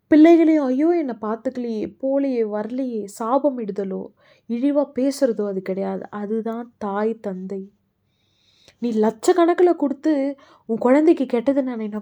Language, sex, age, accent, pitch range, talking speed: Tamil, female, 20-39, native, 215-285 Hz, 110 wpm